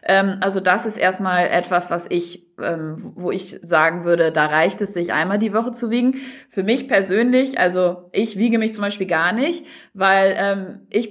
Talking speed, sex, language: 180 wpm, female, German